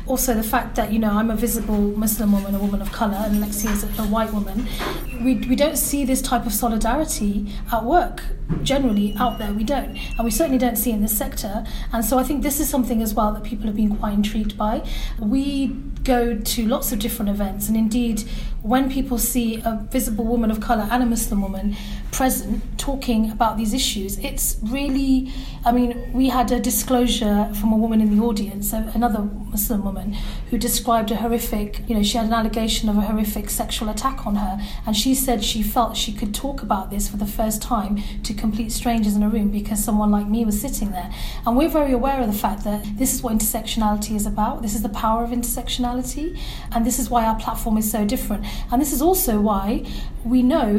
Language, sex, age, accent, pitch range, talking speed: English, female, 10-29, British, 215-245 Hz, 215 wpm